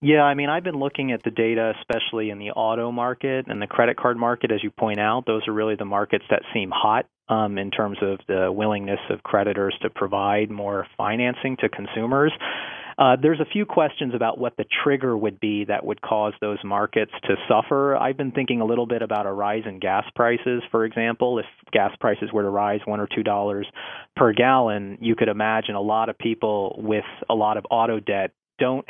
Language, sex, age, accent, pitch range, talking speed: English, male, 30-49, American, 105-120 Hz, 210 wpm